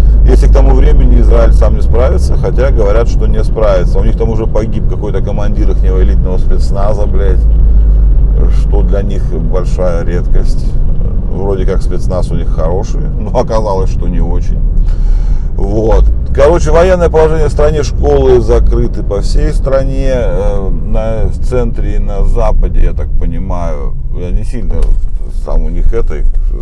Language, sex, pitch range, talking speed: Russian, male, 75-110 Hz, 150 wpm